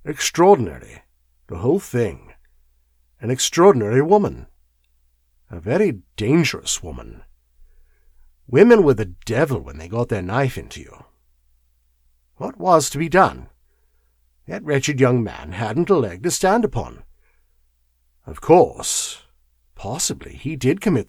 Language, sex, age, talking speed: English, male, 50-69, 120 wpm